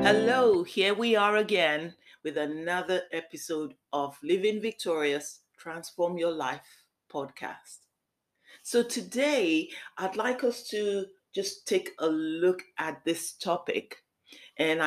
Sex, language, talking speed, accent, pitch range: female, English, 115 wpm, Nigerian, 160-220 Hz